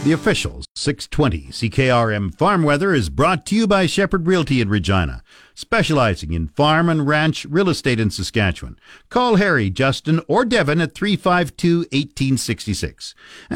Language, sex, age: English, male, 50-69